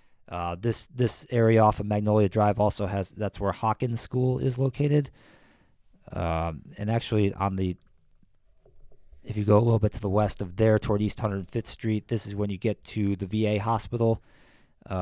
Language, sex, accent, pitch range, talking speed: English, male, American, 95-115 Hz, 190 wpm